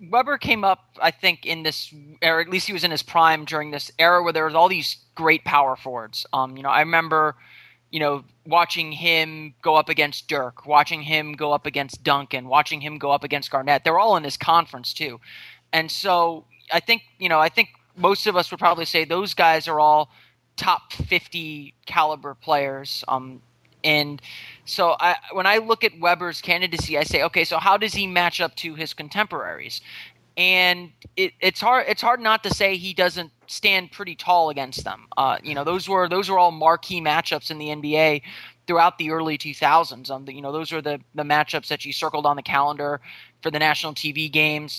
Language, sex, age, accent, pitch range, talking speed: English, male, 20-39, American, 145-175 Hz, 205 wpm